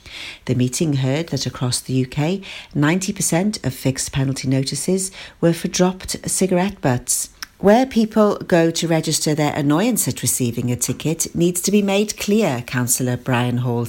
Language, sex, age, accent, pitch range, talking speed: English, female, 50-69, British, 140-190 Hz, 155 wpm